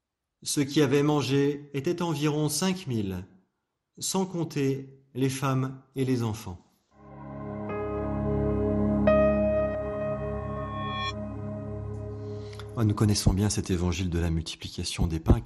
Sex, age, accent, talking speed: male, 30-49, French, 95 wpm